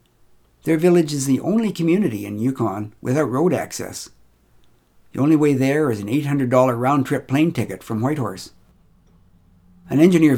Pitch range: 105-145 Hz